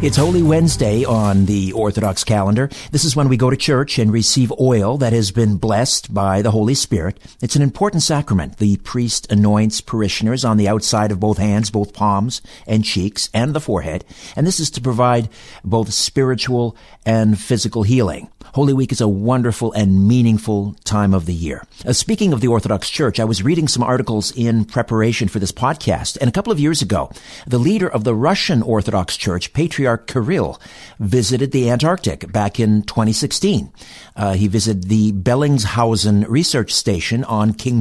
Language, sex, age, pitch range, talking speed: English, male, 60-79, 105-130 Hz, 180 wpm